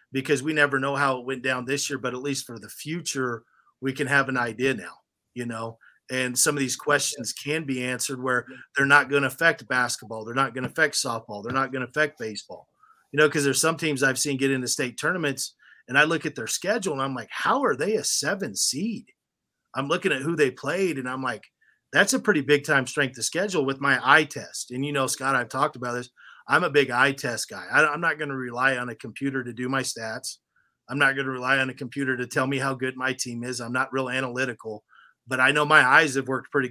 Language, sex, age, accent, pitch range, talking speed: English, male, 30-49, American, 125-140 Hz, 250 wpm